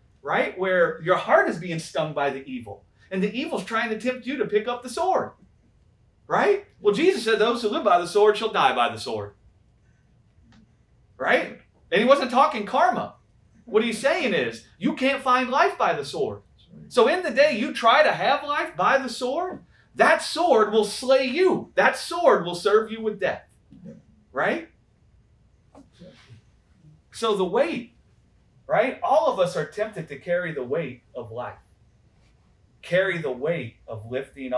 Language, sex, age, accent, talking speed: English, male, 30-49, American, 170 wpm